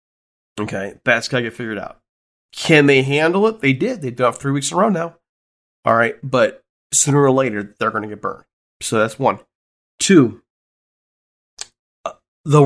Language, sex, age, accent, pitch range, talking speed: English, male, 30-49, American, 110-135 Hz, 180 wpm